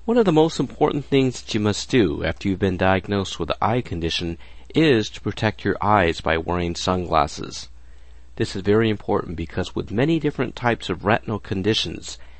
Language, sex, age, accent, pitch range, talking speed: English, male, 50-69, American, 80-110 Hz, 180 wpm